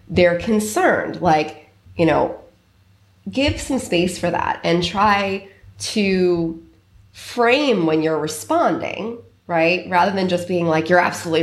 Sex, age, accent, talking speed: female, 20-39, American, 130 wpm